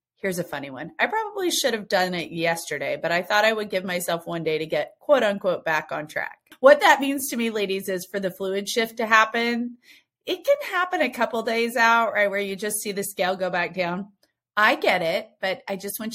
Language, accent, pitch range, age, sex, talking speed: English, American, 180-245 Hz, 30-49, female, 240 wpm